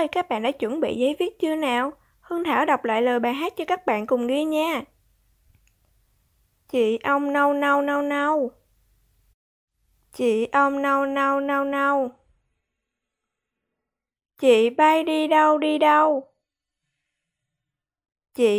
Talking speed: 160 wpm